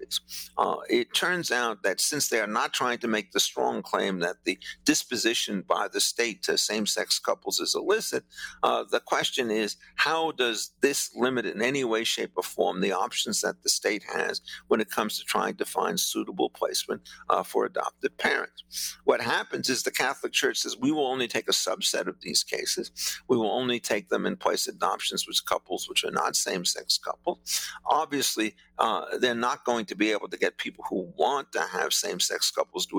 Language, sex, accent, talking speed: English, male, American, 195 wpm